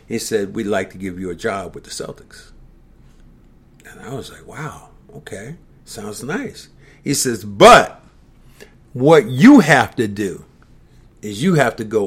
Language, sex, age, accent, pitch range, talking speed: English, male, 50-69, American, 110-145 Hz, 165 wpm